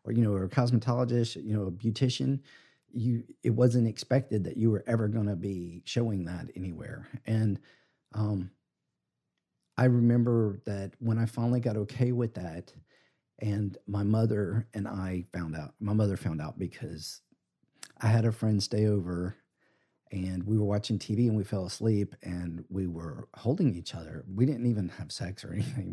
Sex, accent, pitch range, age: male, American, 95-115 Hz, 40-59